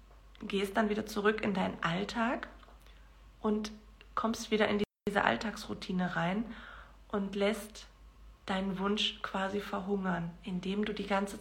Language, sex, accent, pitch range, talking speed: German, female, German, 180-210 Hz, 125 wpm